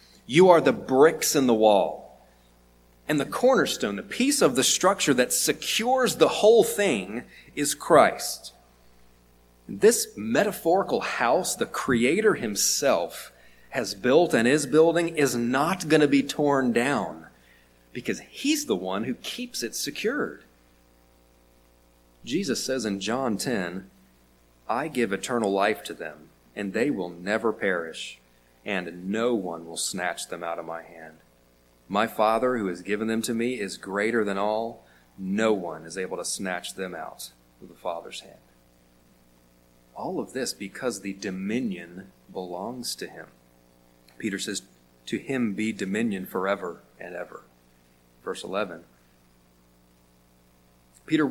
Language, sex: English, male